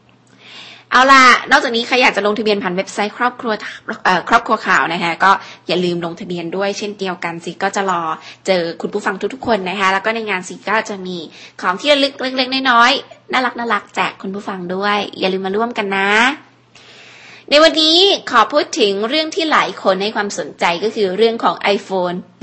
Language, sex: Thai, female